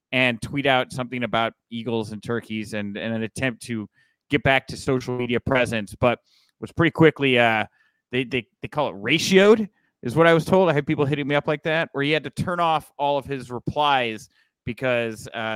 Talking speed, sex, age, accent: 210 wpm, male, 30-49, American